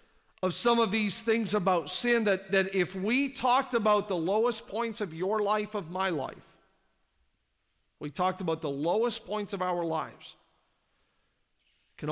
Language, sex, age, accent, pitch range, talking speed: English, male, 50-69, American, 195-255 Hz, 160 wpm